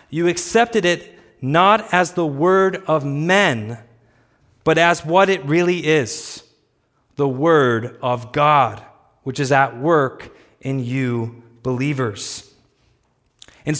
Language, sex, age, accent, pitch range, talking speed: English, male, 30-49, American, 130-200 Hz, 115 wpm